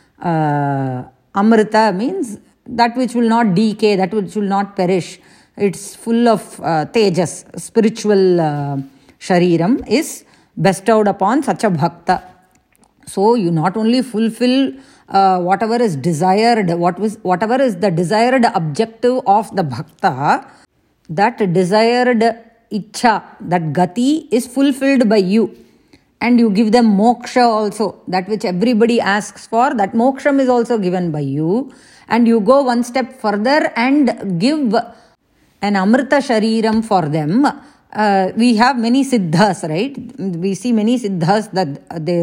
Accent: Indian